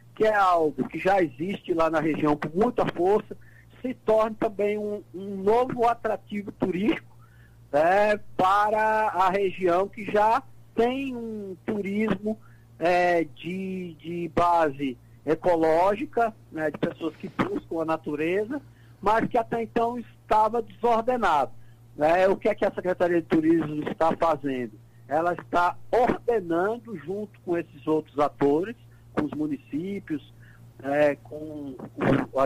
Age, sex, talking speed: 60-79, male, 130 wpm